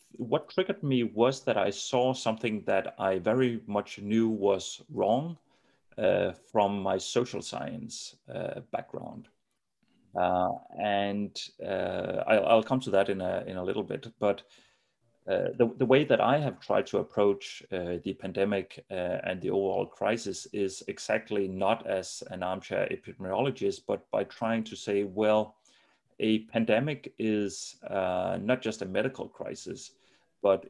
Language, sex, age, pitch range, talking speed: English, male, 30-49, 95-120 Hz, 150 wpm